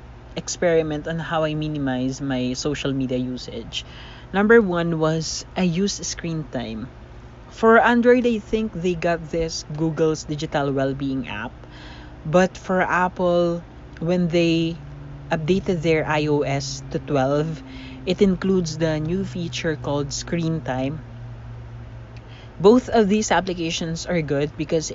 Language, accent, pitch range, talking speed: English, Filipino, 135-175 Hz, 125 wpm